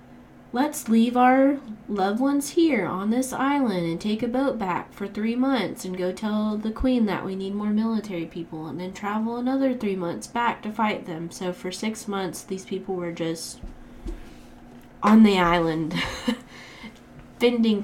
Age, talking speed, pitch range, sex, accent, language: 20-39, 170 wpm, 165-225 Hz, female, American, English